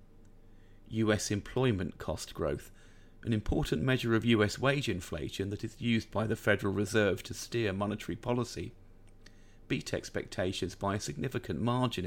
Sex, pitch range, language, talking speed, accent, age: male, 100-115 Hz, English, 140 wpm, British, 40-59